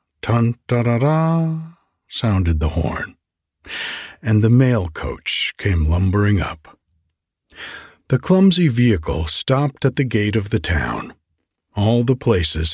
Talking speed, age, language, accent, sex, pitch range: 115 wpm, 60-79, English, American, male, 85-130 Hz